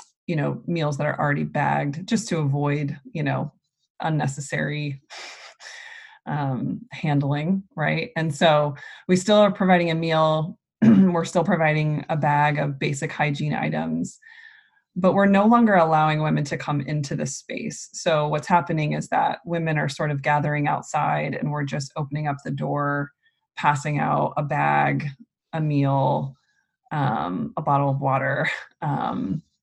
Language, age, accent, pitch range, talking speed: English, 20-39, American, 145-195 Hz, 150 wpm